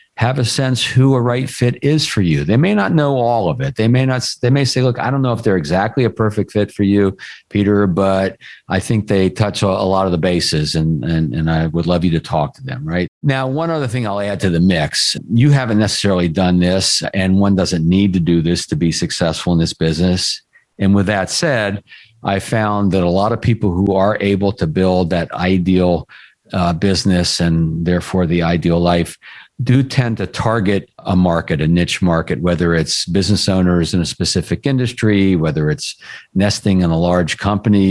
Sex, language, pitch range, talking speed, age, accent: male, English, 90-115 Hz, 215 wpm, 50-69, American